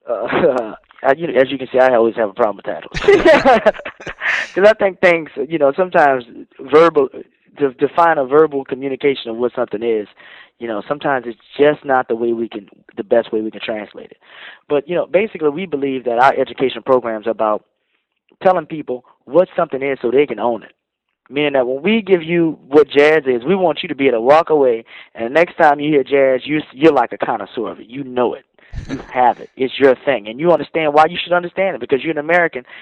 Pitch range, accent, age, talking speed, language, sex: 125-170 Hz, American, 20-39, 225 wpm, English, male